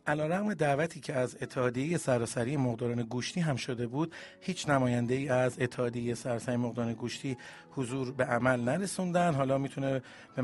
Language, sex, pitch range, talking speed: Persian, male, 125-160 Hz, 150 wpm